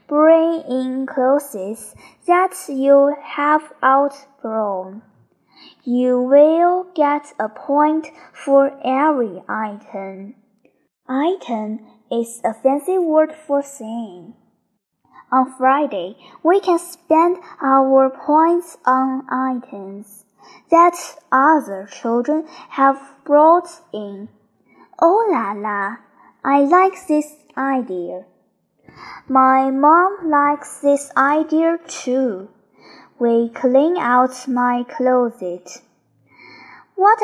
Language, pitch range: Chinese, 235-315 Hz